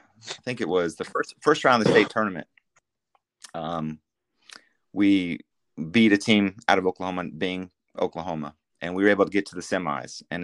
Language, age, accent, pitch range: English, 30-49, American, 85-100 Hz